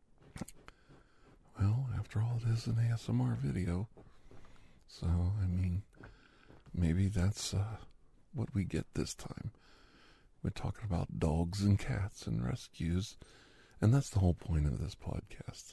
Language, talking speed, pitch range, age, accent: English, 135 wpm, 80-105 Hz, 50-69, American